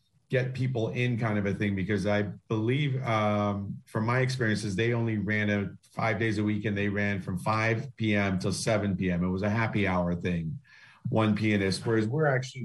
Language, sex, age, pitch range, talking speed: English, male, 40-59, 100-115 Hz, 200 wpm